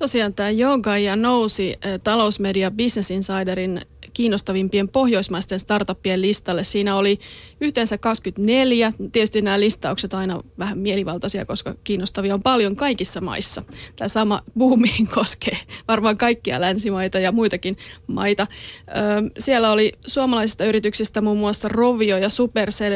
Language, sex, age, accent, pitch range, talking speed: Finnish, female, 30-49, native, 195-225 Hz, 120 wpm